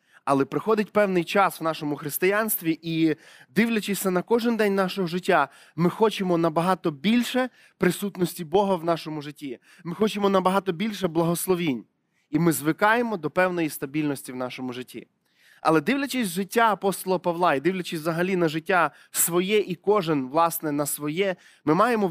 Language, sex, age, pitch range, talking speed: Ukrainian, male, 20-39, 165-205 Hz, 150 wpm